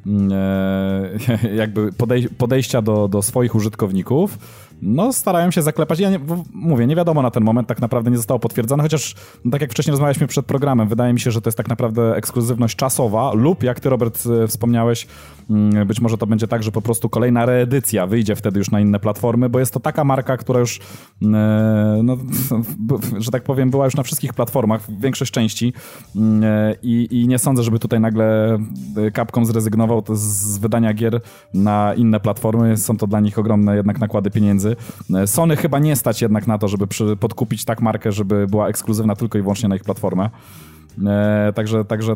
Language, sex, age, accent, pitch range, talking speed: Polish, male, 20-39, native, 105-130 Hz, 175 wpm